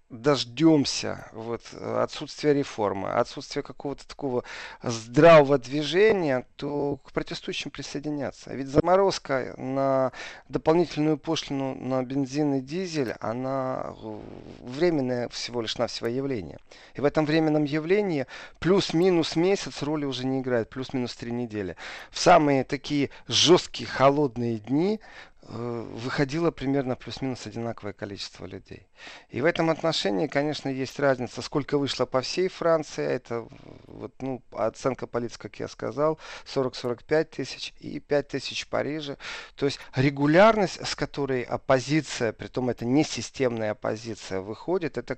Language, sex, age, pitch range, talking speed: Russian, male, 40-59, 120-150 Hz, 120 wpm